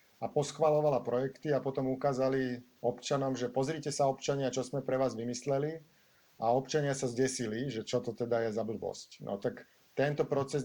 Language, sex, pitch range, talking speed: Slovak, male, 115-135 Hz, 175 wpm